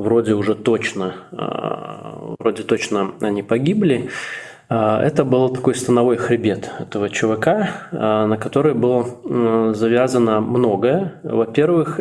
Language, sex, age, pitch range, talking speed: Russian, male, 20-39, 110-125 Hz, 95 wpm